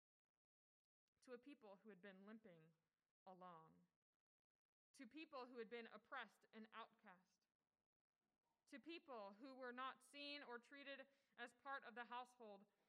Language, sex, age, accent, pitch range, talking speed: English, female, 20-39, American, 190-245 Hz, 130 wpm